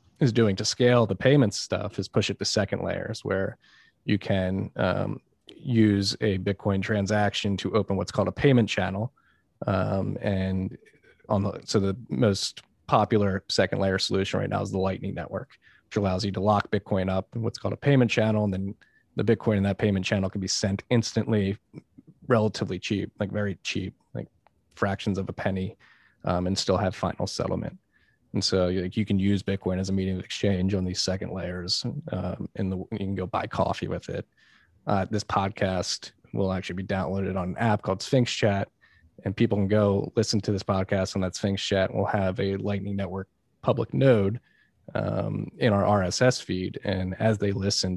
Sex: male